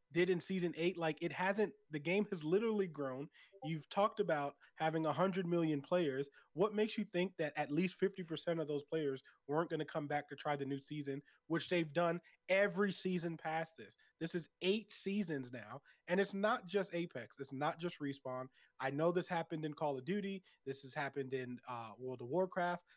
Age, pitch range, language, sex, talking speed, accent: 20-39, 145-185 Hz, English, male, 205 wpm, American